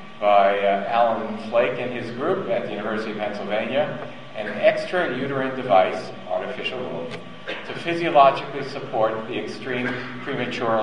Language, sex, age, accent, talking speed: English, male, 50-69, American, 135 wpm